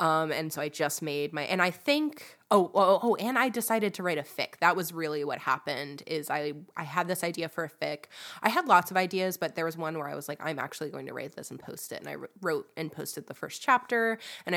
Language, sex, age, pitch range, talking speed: English, female, 20-39, 155-200 Hz, 270 wpm